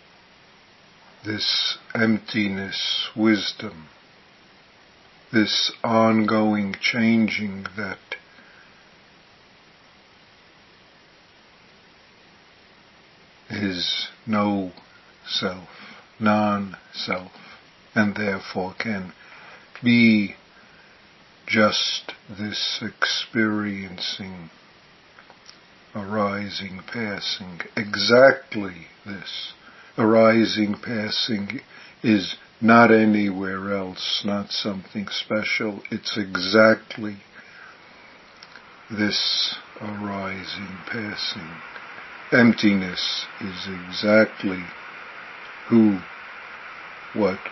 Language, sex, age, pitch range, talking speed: English, male, 50-69, 95-110 Hz, 50 wpm